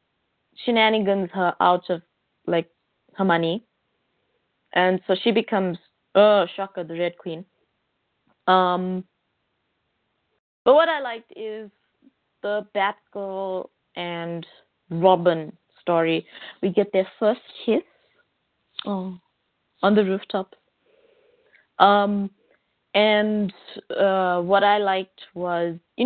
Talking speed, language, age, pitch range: 105 wpm, English, 20-39, 180-215 Hz